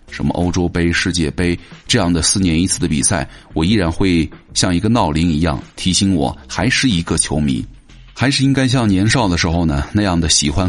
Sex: male